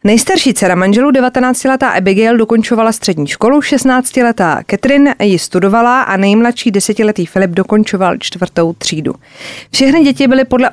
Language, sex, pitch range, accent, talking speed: Czech, female, 185-230 Hz, native, 140 wpm